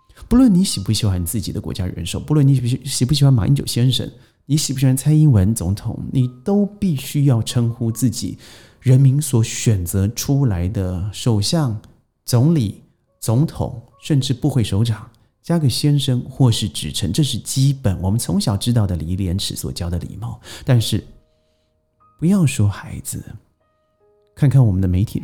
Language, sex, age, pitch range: Chinese, male, 30-49, 105-140 Hz